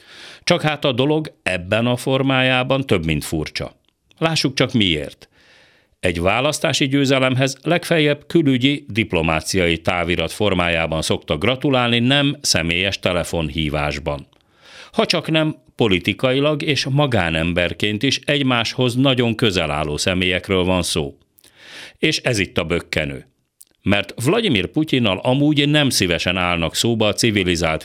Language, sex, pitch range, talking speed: Hungarian, male, 90-140 Hz, 120 wpm